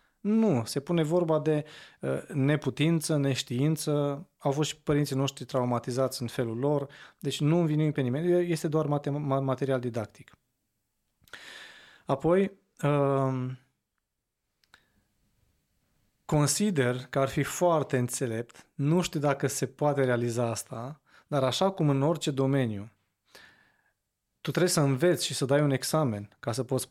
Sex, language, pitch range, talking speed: male, Romanian, 125-155 Hz, 125 wpm